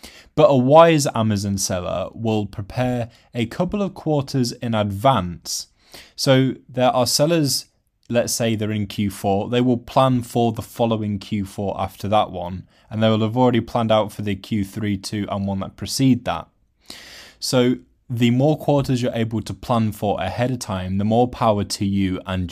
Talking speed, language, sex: 175 wpm, English, male